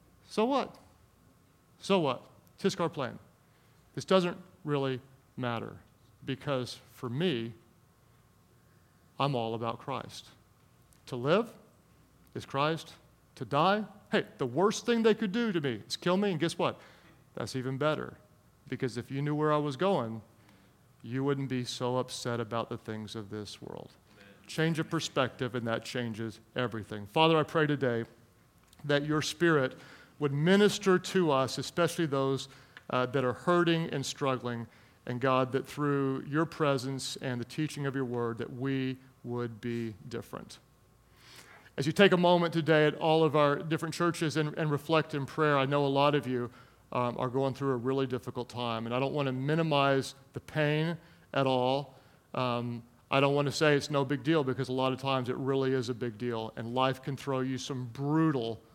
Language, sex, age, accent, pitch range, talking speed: English, male, 40-59, American, 120-155 Hz, 180 wpm